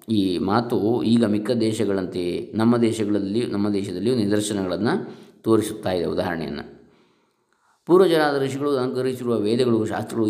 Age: 20-39